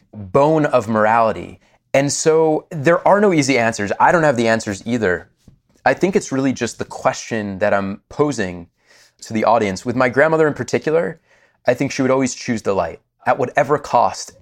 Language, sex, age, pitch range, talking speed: English, male, 20-39, 105-145 Hz, 185 wpm